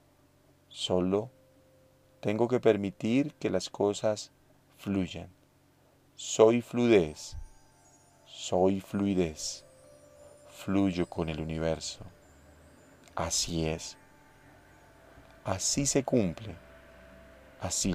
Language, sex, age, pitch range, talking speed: Spanish, male, 40-59, 85-110 Hz, 75 wpm